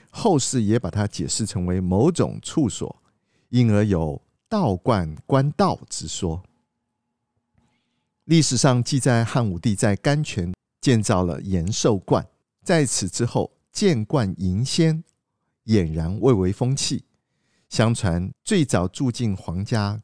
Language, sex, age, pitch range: Chinese, male, 50-69, 95-130 Hz